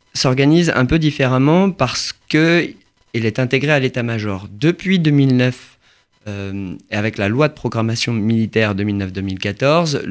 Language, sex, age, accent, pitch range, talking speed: French, male, 30-49, French, 105-135 Hz, 125 wpm